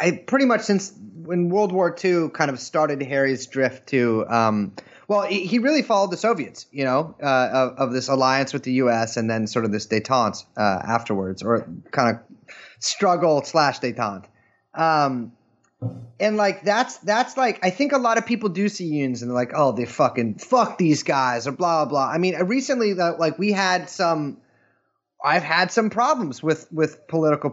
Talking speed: 205 wpm